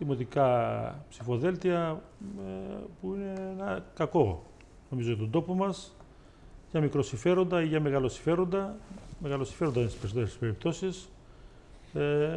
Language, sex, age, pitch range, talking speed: Greek, male, 40-59, 130-165 Hz, 105 wpm